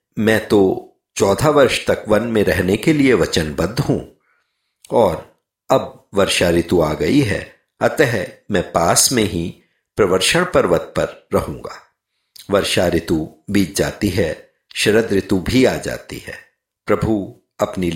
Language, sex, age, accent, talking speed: Hindi, male, 50-69, native, 135 wpm